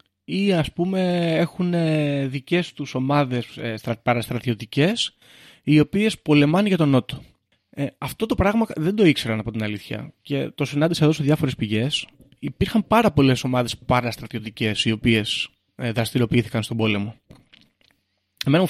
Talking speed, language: 140 wpm, Greek